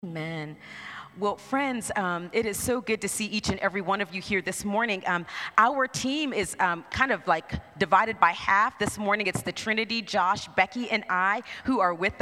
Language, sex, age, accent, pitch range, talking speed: English, female, 30-49, American, 190-225 Hz, 205 wpm